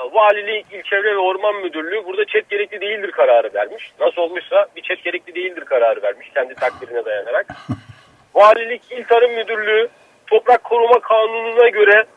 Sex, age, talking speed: male, 40-59, 150 wpm